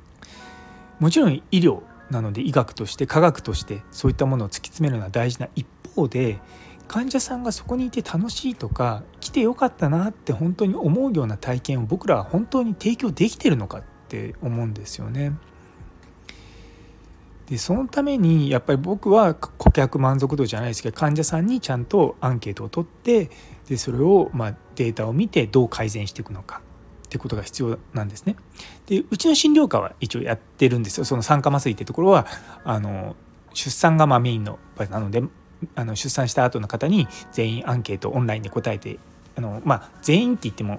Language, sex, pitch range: Japanese, male, 110-165 Hz